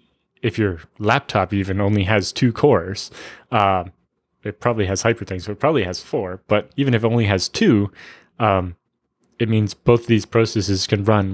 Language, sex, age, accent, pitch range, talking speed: English, male, 20-39, American, 95-115 Hz, 185 wpm